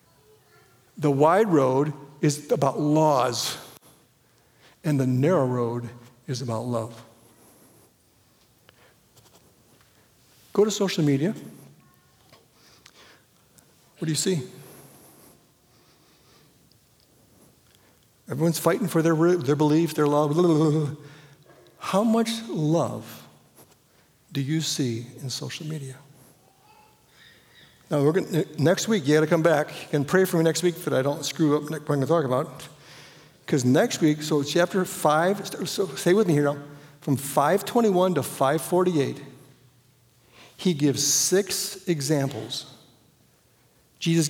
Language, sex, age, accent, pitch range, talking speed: English, male, 60-79, American, 135-170 Hz, 115 wpm